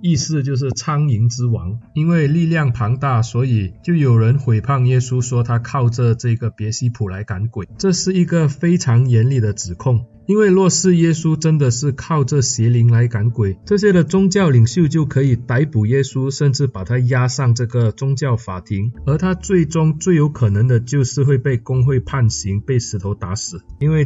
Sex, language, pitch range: male, Chinese, 115-150 Hz